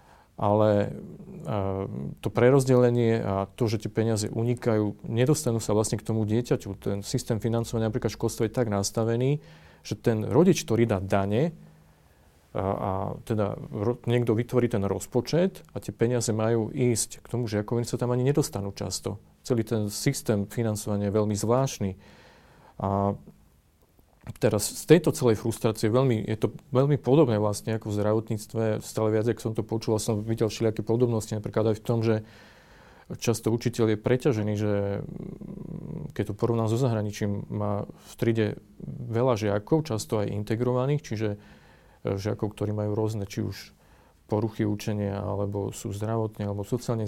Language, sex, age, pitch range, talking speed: Slovak, male, 40-59, 105-120 Hz, 155 wpm